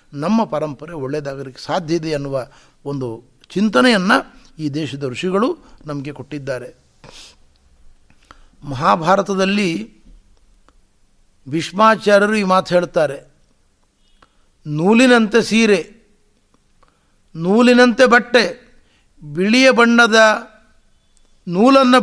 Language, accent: Kannada, native